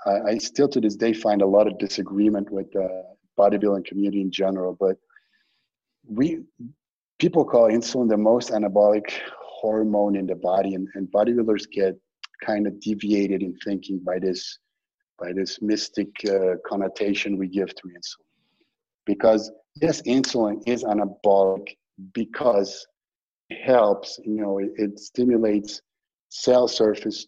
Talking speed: 140 wpm